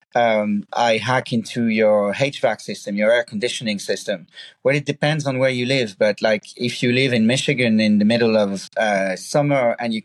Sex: male